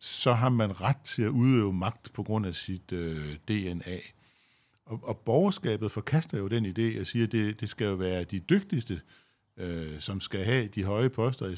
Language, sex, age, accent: Danish, male, 60-79, native